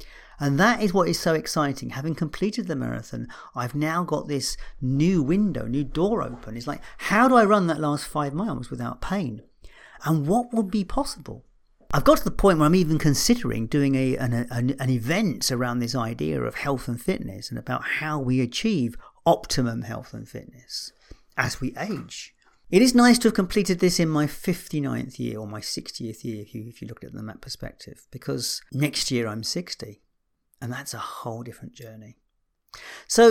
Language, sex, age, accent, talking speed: English, male, 40-59, British, 195 wpm